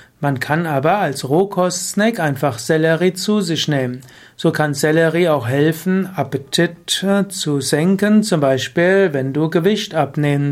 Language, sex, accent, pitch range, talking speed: German, male, German, 140-180 Hz, 135 wpm